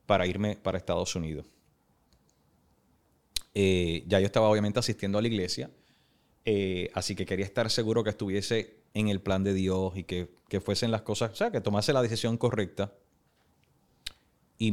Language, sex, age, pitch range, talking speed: Spanish, male, 30-49, 85-105 Hz, 165 wpm